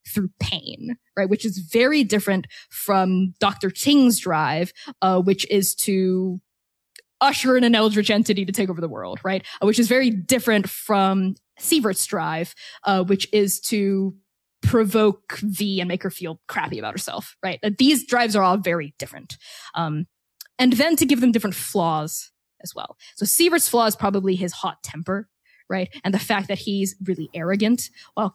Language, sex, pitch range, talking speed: English, female, 185-225 Hz, 175 wpm